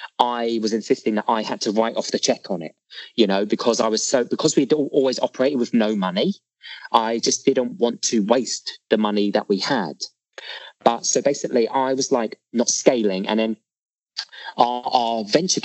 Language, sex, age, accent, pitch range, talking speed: English, male, 30-49, British, 105-135 Hz, 190 wpm